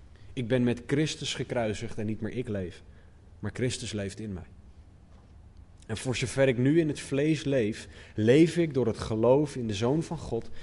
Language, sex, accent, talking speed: Dutch, male, Dutch, 190 wpm